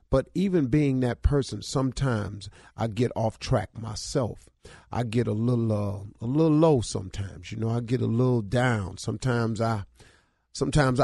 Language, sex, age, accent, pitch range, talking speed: English, male, 40-59, American, 105-135 Hz, 165 wpm